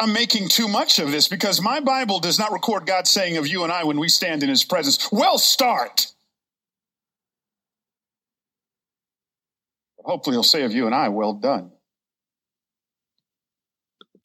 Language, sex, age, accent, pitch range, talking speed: English, male, 40-59, American, 170-230 Hz, 150 wpm